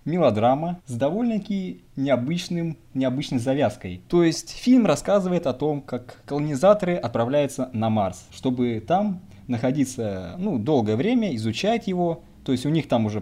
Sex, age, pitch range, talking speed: male, 20-39, 115-160 Hz, 135 wpm